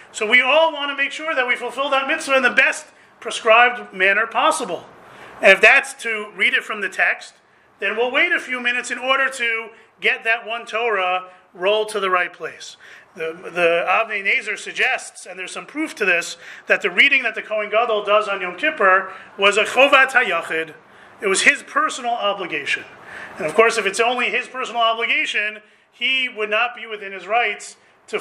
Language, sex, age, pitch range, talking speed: English, male, 30-49, 180-230 Hz, 200 wpm